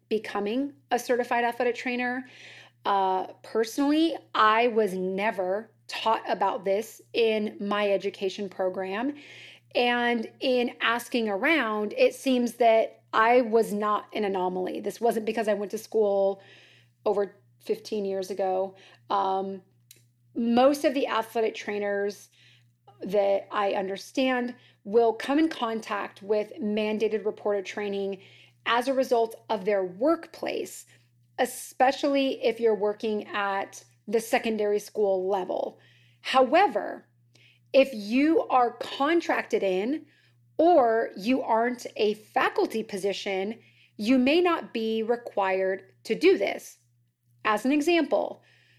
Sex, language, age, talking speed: female, English, 30-49, 115 wpm